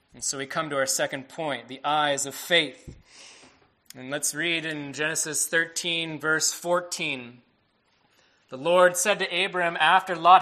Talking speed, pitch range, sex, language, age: 155 wpm, 135-180 Hz, male, English, 20-39